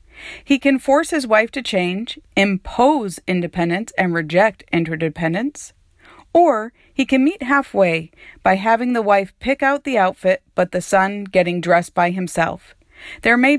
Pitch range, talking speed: 180-260 Hz, 150 wpm